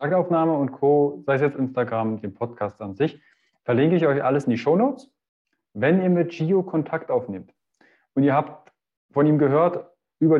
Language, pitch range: German, 125-170 Hz